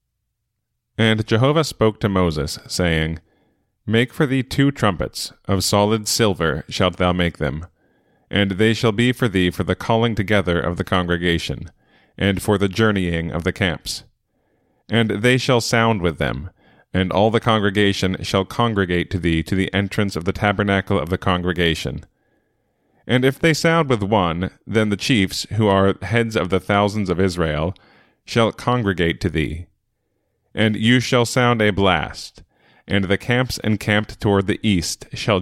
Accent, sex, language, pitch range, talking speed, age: American, male, English, 90-115 Hz, 165 wpm, 30-49